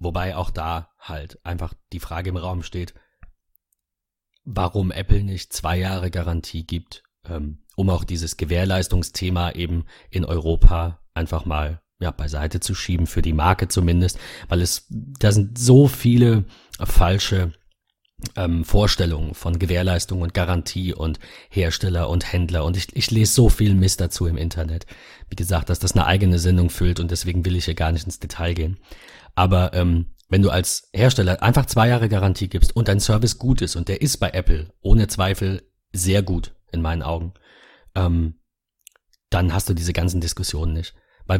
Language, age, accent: German, 30-49, German